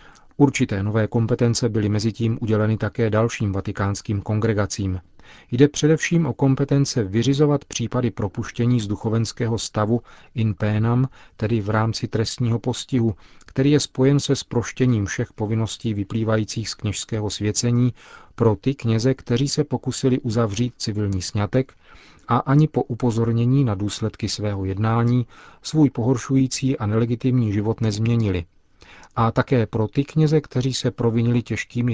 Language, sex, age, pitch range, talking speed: Czech, male, 40-59, 105-125 Hz, 135 wpm